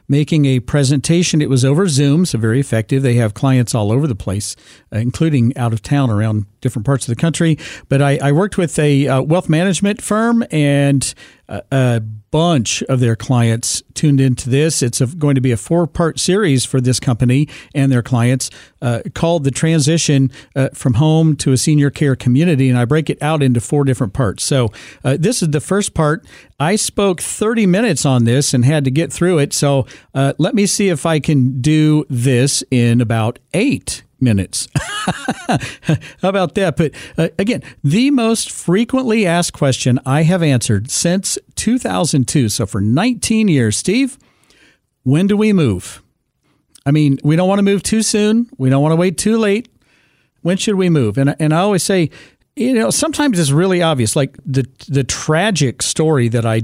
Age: 50-69